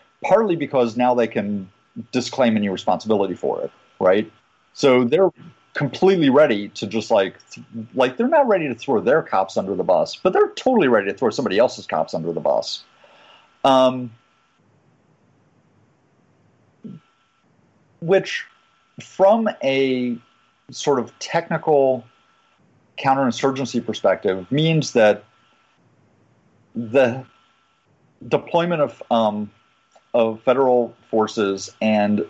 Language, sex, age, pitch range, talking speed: English, male, 40-59, 110-135 Hz, 110 wpm